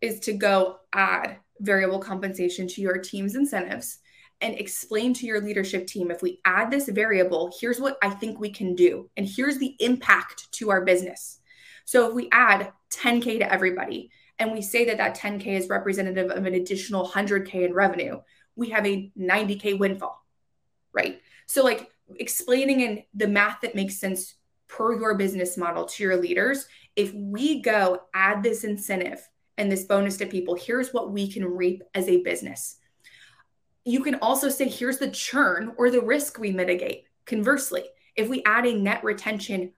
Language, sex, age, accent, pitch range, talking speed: English, female, 20-39, American, 190-230 Hz, 175 wpm